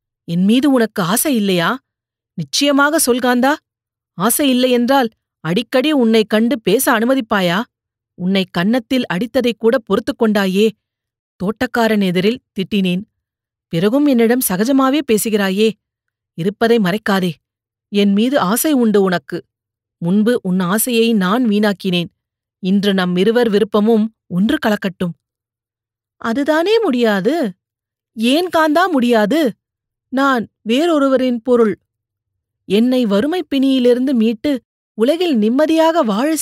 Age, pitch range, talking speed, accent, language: 40-59, 185-265 Hz, 95 wpm, native, Tamil